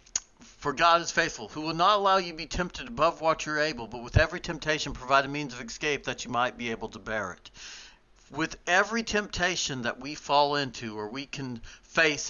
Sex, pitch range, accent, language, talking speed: male, 125-165 Hz, American, English, 220 wpm